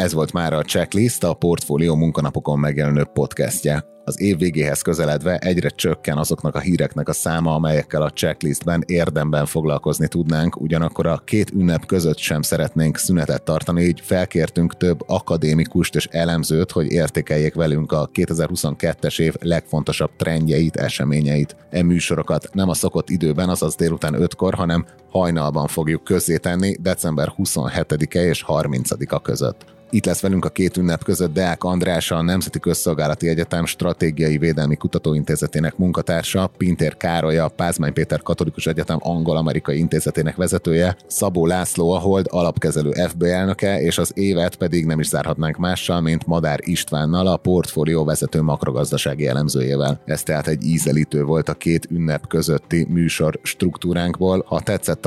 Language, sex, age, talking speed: Hungarian, male, 30-49, 145 wpm